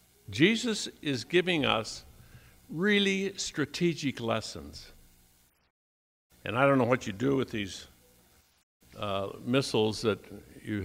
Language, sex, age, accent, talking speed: English, male, 60-79, American, 110 wpm